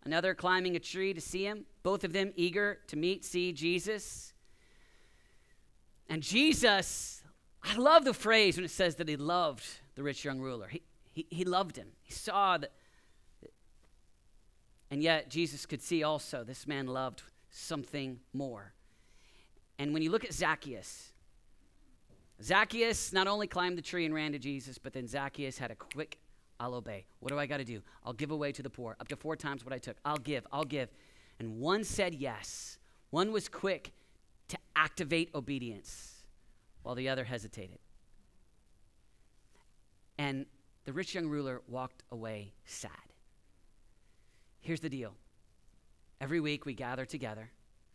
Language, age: English, 40-59